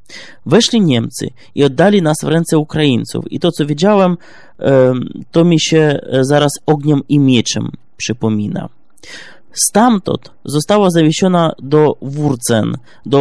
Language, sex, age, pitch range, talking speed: Polish, male, 20-39, 130-170 Hz, 120 wpm